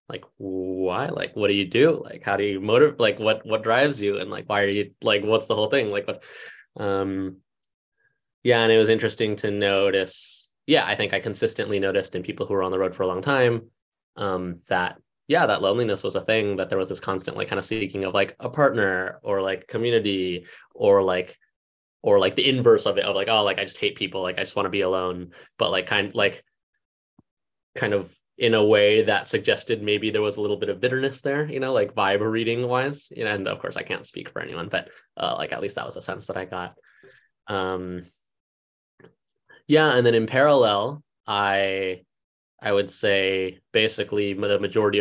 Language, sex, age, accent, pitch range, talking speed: English, male, 20-39, American, 95-130 Hz, 215 wpm